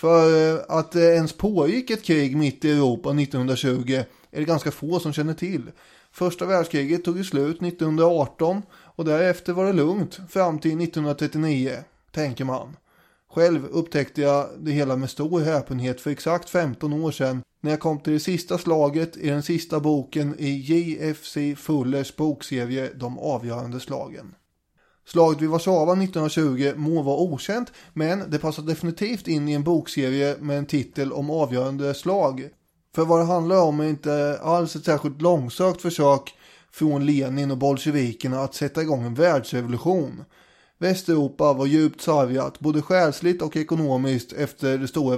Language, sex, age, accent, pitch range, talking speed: English, male, 20-39, Swedish, 140-165 Hz, 155 wpm